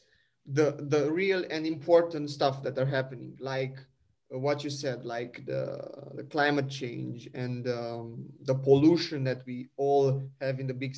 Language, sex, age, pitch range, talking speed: English, male, 20-39, 130-145 Hz, 160 wpm